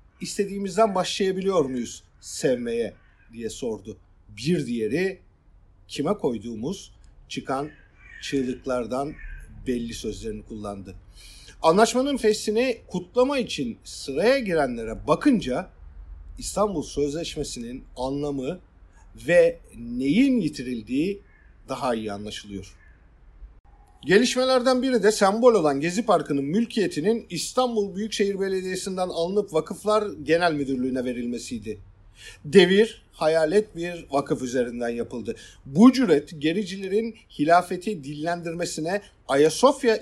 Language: German